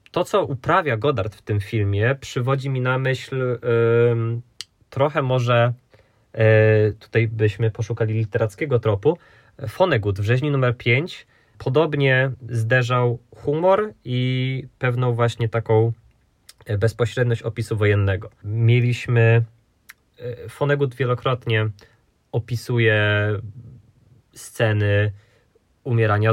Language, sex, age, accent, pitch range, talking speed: Polish, male, 20-39, native, 110-130 Hz, 95 wpm